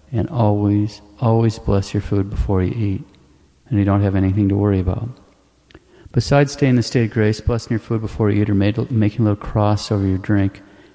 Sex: male